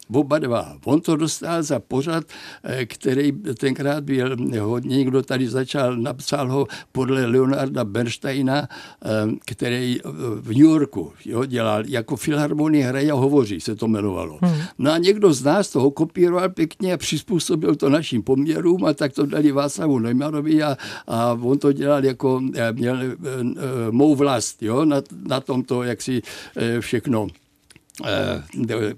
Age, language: 60-79, Czech